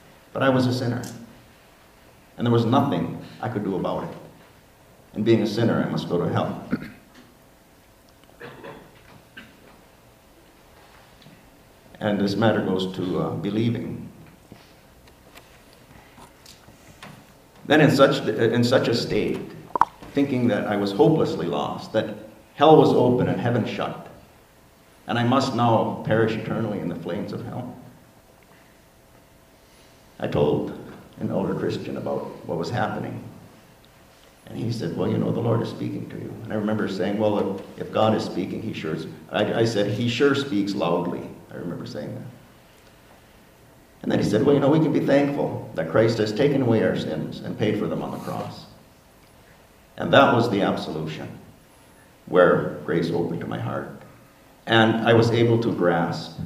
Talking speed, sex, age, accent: 155 wpm, male, 50-69, American